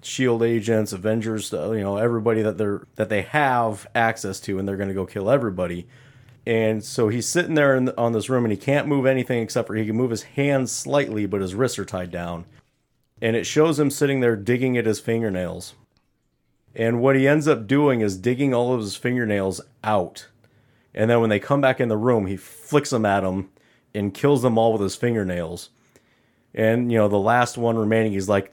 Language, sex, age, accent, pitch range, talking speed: English, male, 30-49, American, 105-130 Hz, 215 wpm